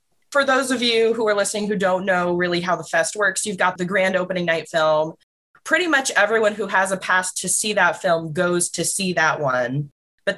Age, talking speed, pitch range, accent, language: 20-39, 225 wpm, 165-210 Hz, American, English